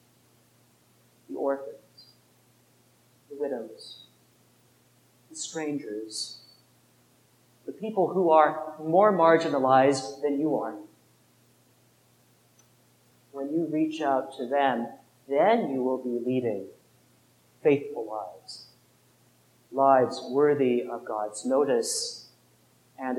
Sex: male